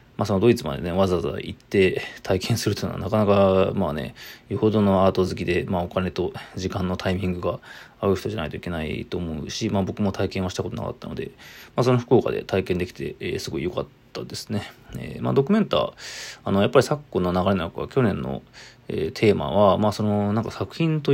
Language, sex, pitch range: Japanese, male, 95-125 Hz